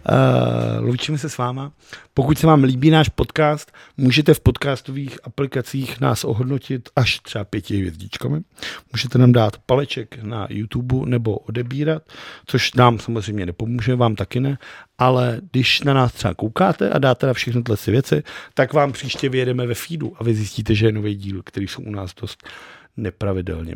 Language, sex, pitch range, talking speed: Czech, male, 105-130 Hz, 170 wpm